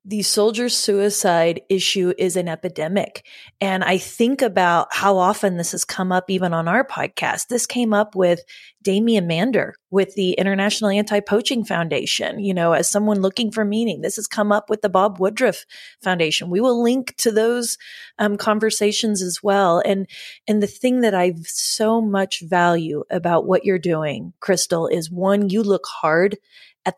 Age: 30-49